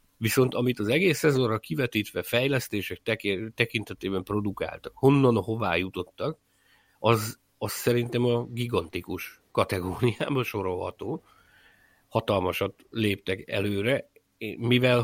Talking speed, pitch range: 90 wpm, 100-120 Hz